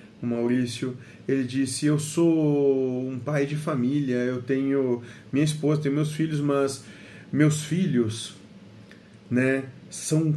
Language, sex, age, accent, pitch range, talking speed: Portuguese, male, 40-59, Brazilian, 120-160 Hz, 125 wpm